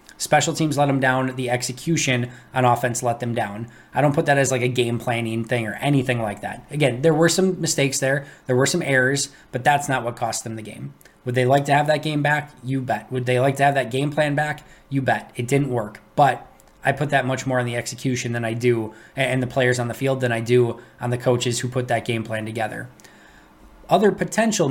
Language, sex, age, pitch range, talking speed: English, male, 20-39, 125-145 Hz, 245 wpm